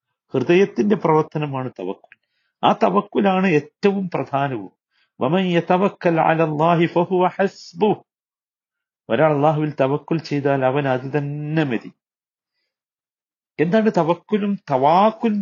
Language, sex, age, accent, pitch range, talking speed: Malayalam, male, 50-69, native, 145-185 Hz, 65 wpm